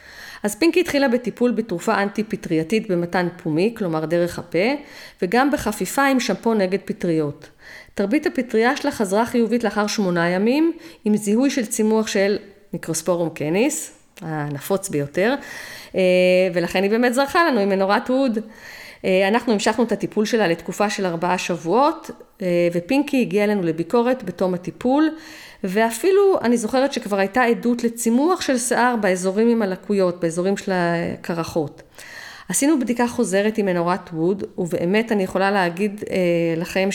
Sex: female